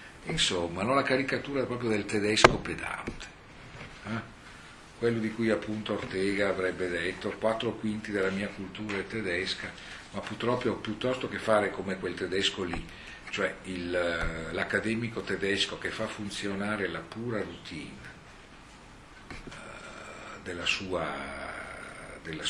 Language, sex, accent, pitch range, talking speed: Italian, male, native, 95-110 Hz, 125 wpm